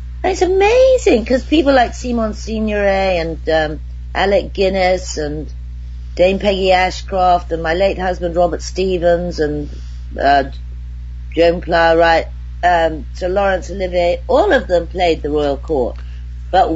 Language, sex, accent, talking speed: English, female, British, 135 wpm